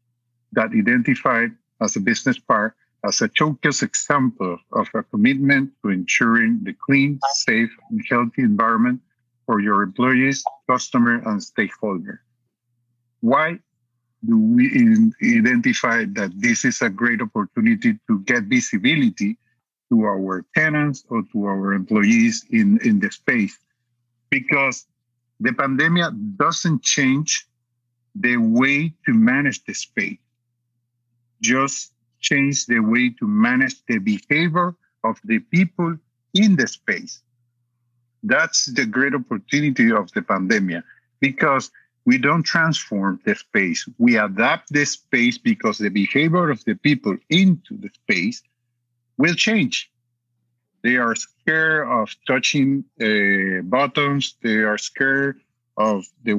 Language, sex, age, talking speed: English, male, 50-69, 125 wpm